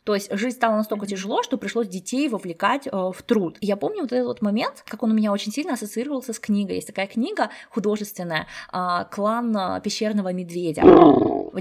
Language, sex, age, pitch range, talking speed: Russian, female, 20-39, 175-230 Hz, 185 wpm